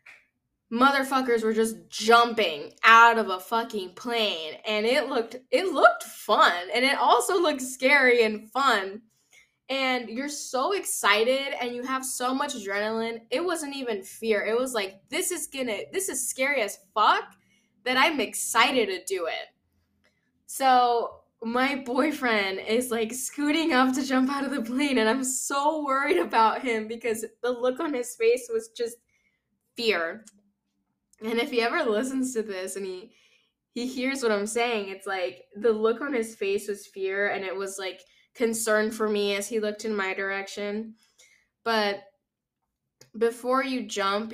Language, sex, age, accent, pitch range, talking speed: English, female, 10-29, American, 200-255 Hz, 165 wpm